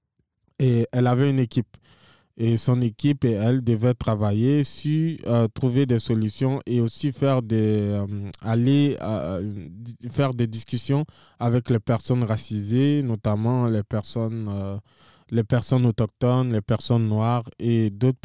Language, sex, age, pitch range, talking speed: English, male, 20-39, 110-130 Hz, 140 wpm